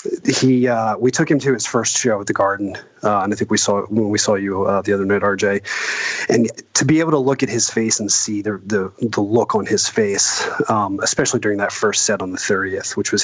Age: 30-49